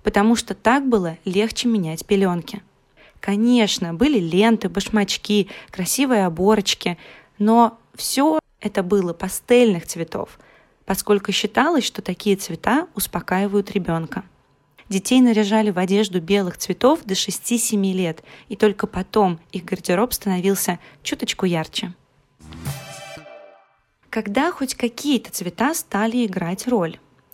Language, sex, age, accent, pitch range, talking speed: Russian, female, 20-39, native, 185-225 Hz, 110 wpm